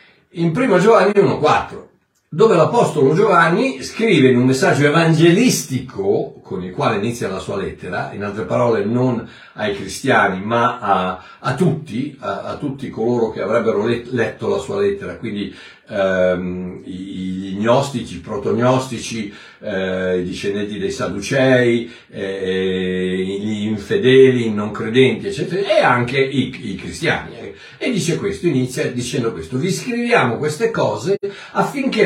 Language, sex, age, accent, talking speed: Italian, male, 60-79, native, 140 wpm